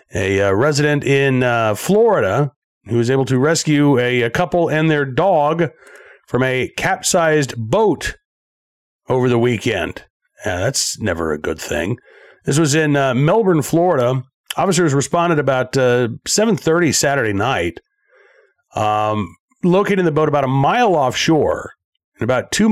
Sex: male